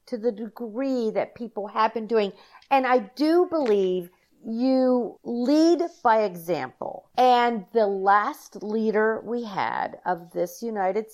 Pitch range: 195-255 Hz